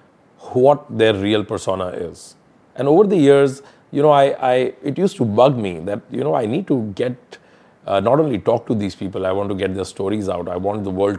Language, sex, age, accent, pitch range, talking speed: English, male, 30-49, Indian, 95-120 Hz, 230 wpm